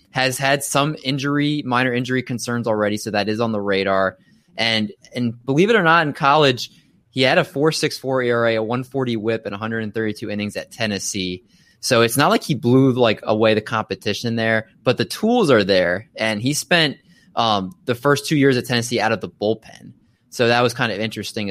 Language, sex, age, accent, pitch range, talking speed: English, male, 20-39, American, 105-125 Hz, 220 wpm